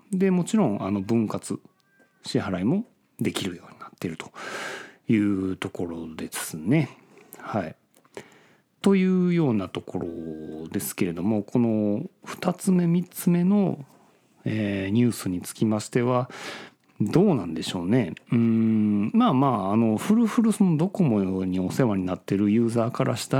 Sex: male